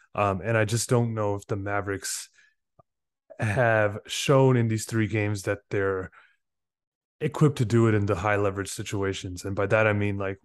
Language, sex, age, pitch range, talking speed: English, male, 20-39, 105-120 Hz, 185 wpm